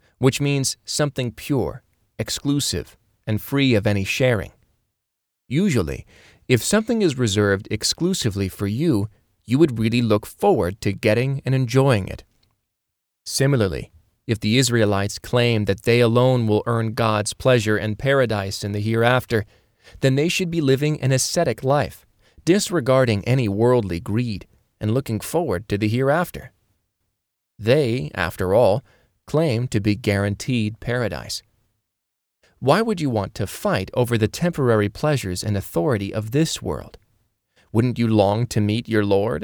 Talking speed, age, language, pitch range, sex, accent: 140 wpm, 30-49, English, 105-130 Hz, male, American